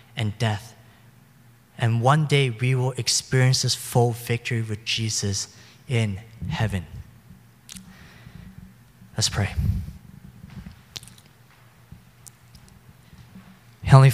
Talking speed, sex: 75 wpm, male